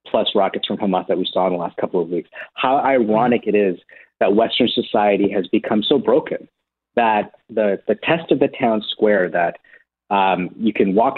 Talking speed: 200 wpm